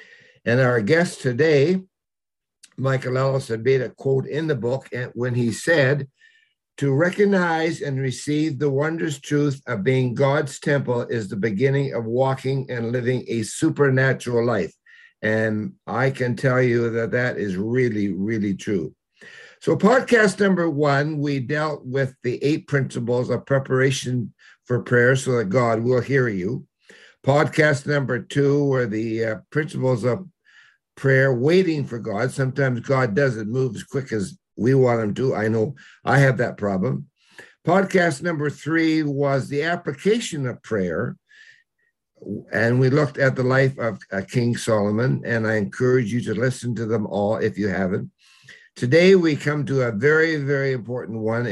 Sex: male